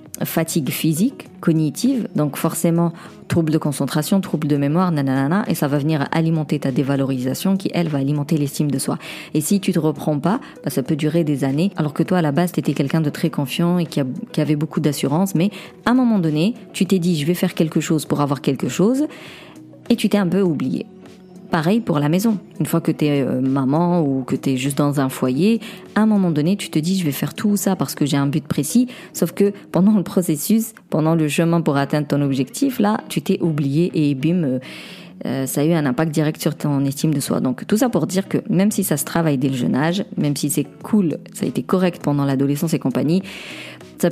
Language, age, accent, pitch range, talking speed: French, 40-59, French, 150-195 Hz, 240 wpm